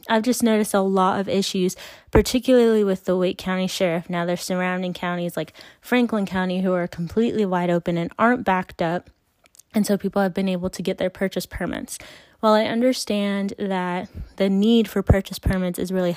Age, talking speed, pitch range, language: 20-39, 190 wpm, 185-215 Hz, English